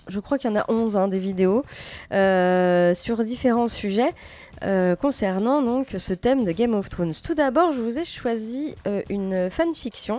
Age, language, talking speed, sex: 20-39, French, 190 wpm, female